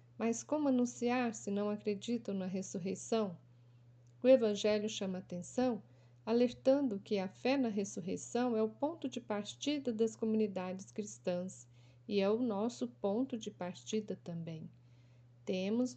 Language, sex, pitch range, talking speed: Portuguese, female, 185-245 Hz, 130 wpm